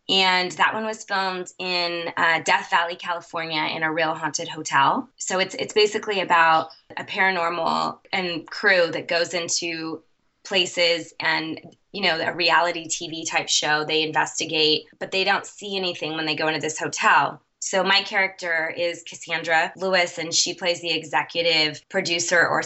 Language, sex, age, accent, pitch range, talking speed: English, female, 20-39, American, 160-185 Hz, 165 wpm